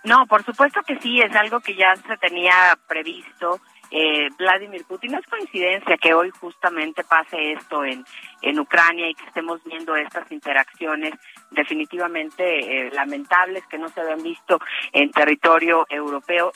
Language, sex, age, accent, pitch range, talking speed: Spanish, female, 30-49, Mexican, 150-185 Hz, 155 wpm